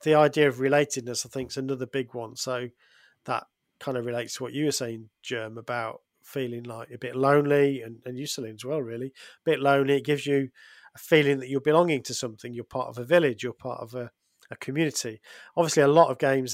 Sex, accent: male, British